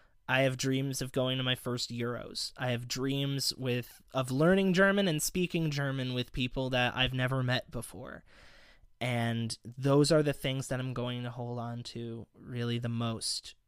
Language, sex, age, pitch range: English, male, 20-39, 120-145 Hz